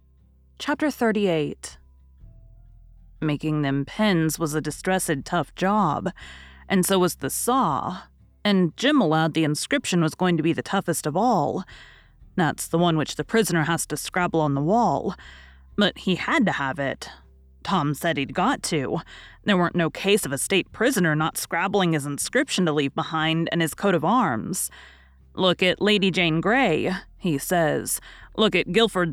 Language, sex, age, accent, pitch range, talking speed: English, female, 30-49, American, 150-210 Hz, 165 wpm